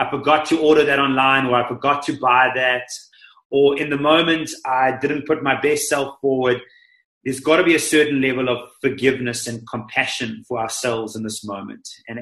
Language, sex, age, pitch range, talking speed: English, male, 30-49, 130-155 Hz, 195 wpm